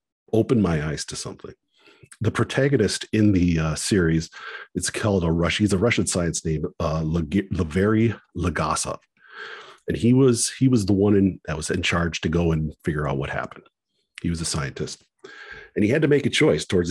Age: 40-59